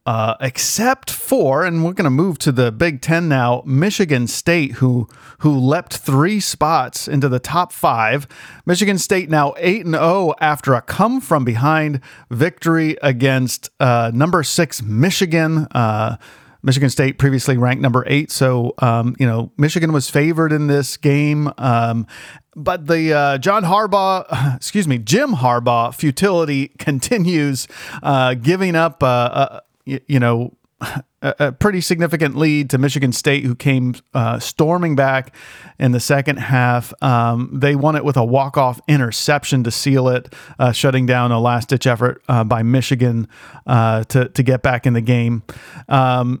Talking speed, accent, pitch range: 155 wpm, American, 125-155 Hz